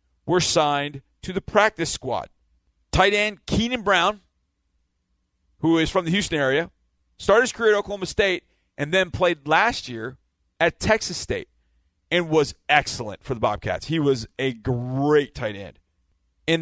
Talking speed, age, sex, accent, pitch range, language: 155 wpm, 40-59, male, American, 120-170 Hz, English